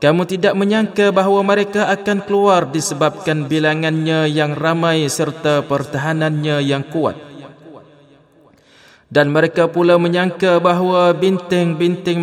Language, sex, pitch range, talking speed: Malay, male, 135-175 Hz, 105 wpm